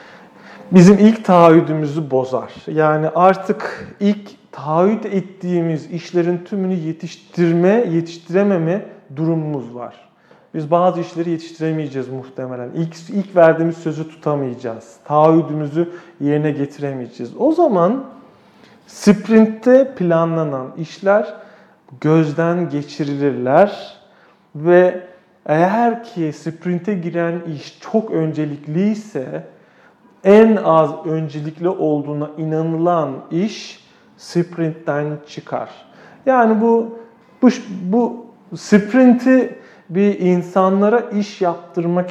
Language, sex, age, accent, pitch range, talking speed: Turkish, male, 40-59, native, 155-205 Hz, 85 wpm